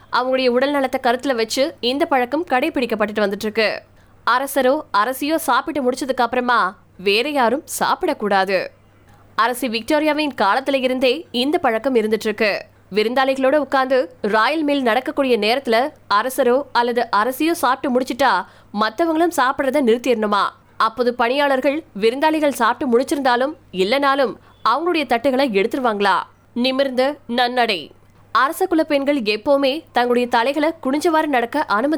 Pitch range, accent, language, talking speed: 230-285 Hz, native, Tamil, 65 wpm